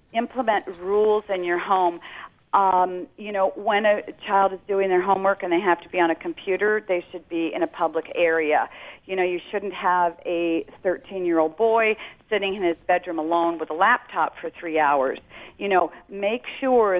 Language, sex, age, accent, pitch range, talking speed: English, female, 50-69, American, 170-205 Hz, 185 wpm